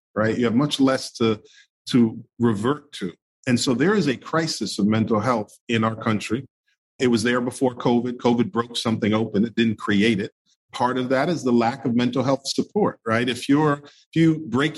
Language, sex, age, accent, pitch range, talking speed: English, male, 40-59, American, 115-135 Hz, 195 wpm